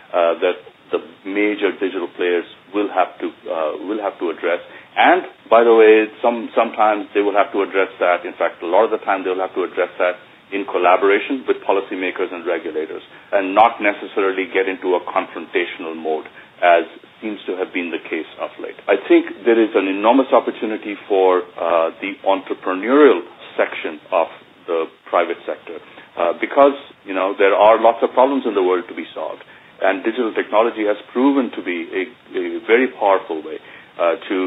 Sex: male